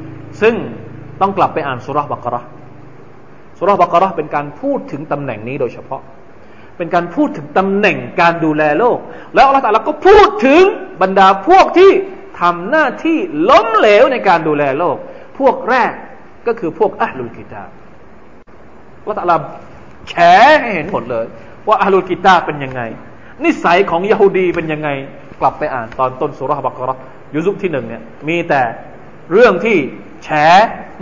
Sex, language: male, Thai